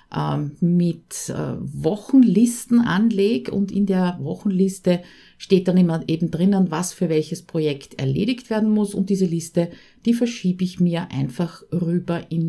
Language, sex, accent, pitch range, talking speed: German, female, Austrian, 165-205 Hz, 140 wpm